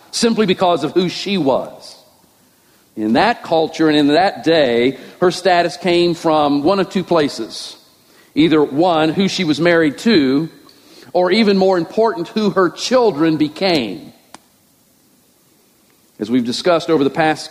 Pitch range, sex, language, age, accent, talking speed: 180-230 Hz, male, English, 50-69, American, 145 wpm